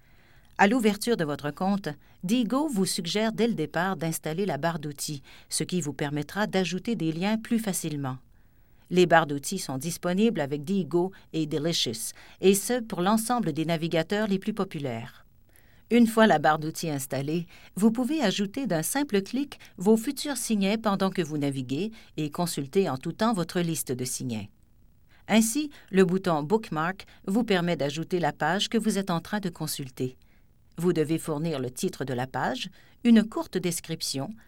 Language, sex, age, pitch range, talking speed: French, female, 50-69, 145-210 Hz, 170 wpm